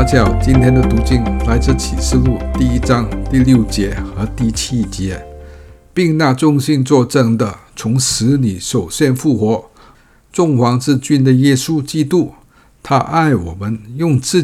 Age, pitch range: 60-79, 105-145 Hz